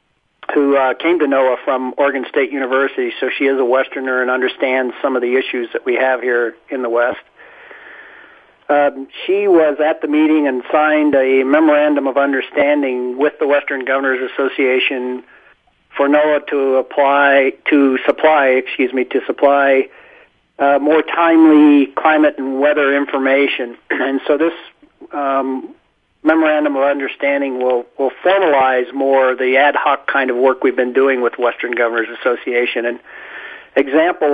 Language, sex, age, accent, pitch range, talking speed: English, male, 40-59, American, 130-150 Hz, 150 wpm